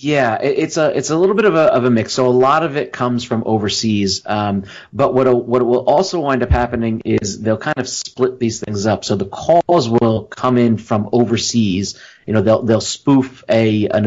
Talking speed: 225 wpm